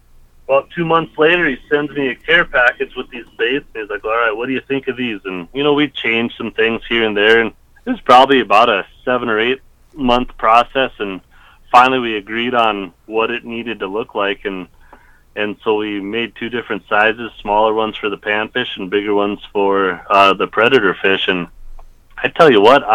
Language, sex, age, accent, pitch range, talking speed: English, male, 30-49, American, 100-125 Hz, 210 wpm